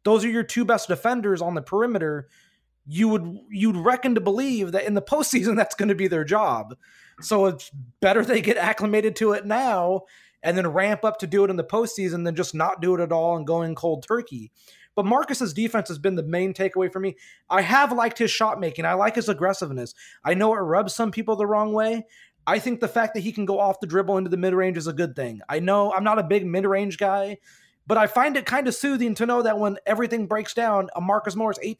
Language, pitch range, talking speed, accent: English, 185-220 Hz, 240 wpm, American